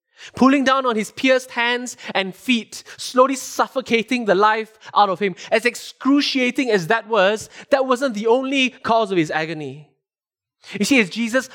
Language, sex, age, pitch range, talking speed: English, male, 20-39, 205-260 Hz, 165 wpm